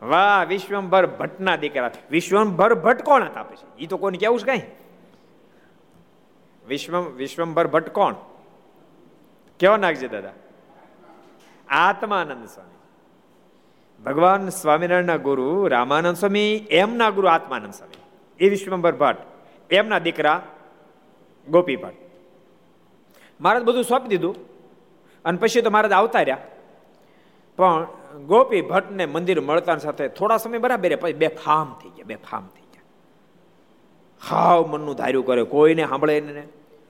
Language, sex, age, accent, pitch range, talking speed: Gujarati, male, 50-69, native, 155-200 Hz, 80 wpm